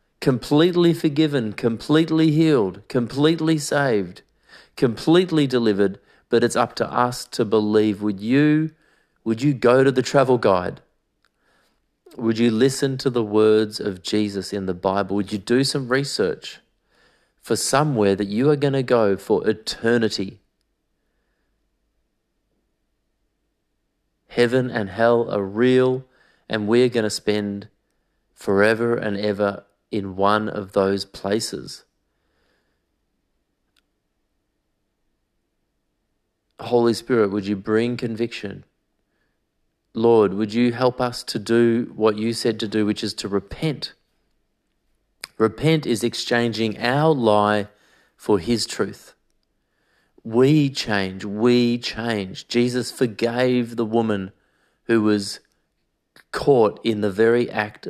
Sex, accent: male, Australian